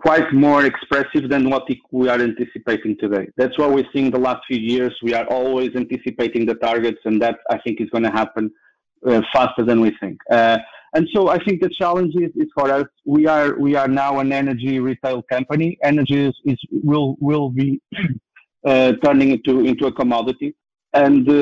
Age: 40-59